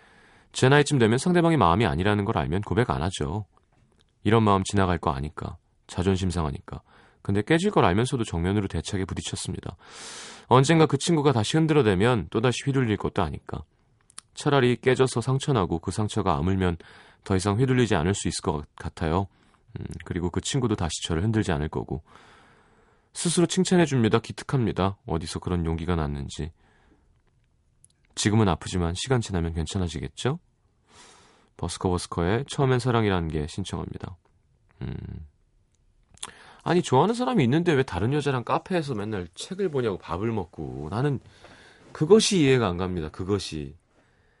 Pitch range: 90-130 Hz